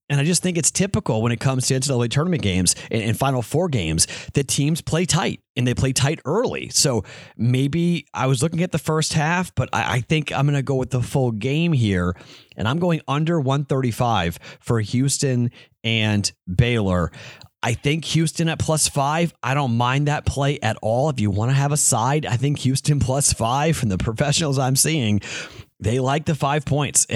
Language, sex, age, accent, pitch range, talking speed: English, male, 30-49, American, 110-145 Hz, 205 wpm